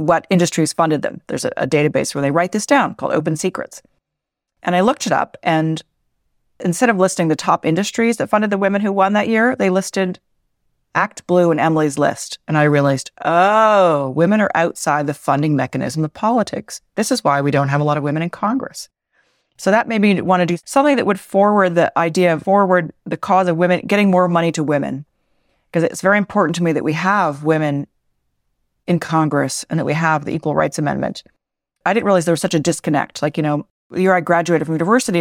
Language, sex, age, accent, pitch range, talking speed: English, female, 40-59, American, 155-195 Hz, 220 wpm